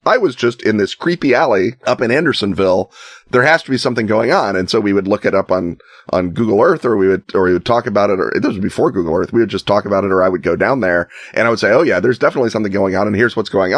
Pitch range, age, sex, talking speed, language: 95-115 Hz, 30-49, male, 305 wpm, English